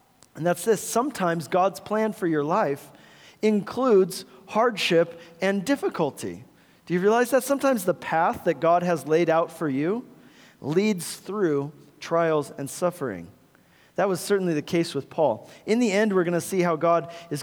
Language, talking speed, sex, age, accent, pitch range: English, 170 wpm, male, 40-59, American, 155-195 Hz